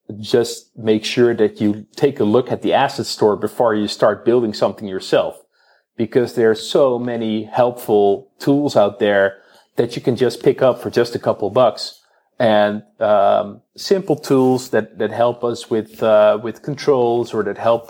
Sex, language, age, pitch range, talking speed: male, English, 30-49, 100-115 Hz, 180 wpm